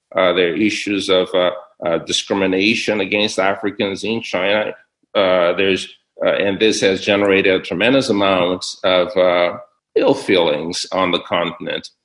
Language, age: English, 50-69